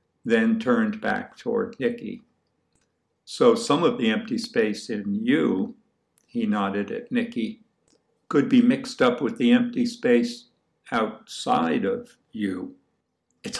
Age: 60-79